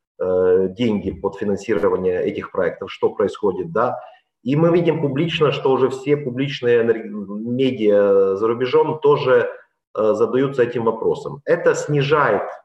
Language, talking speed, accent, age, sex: Ukrainian, 120 wpm, native, 30-49, male